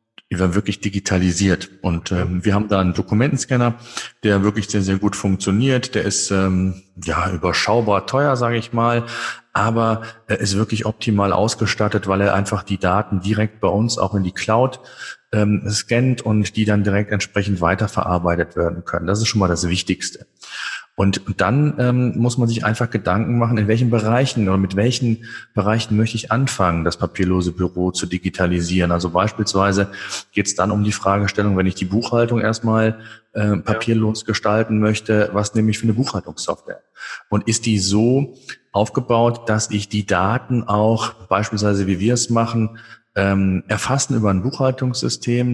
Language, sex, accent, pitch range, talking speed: German, male, German, 100-115 Hz, 165 wpm